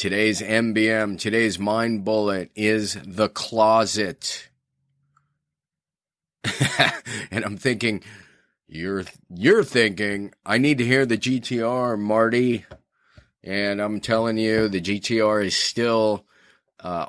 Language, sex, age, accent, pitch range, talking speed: English, male, 30-49, American, 95-110 Hz, 105 wpm